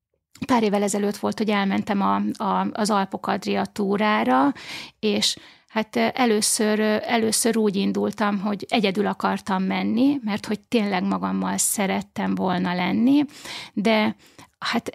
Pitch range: 200-250 Hz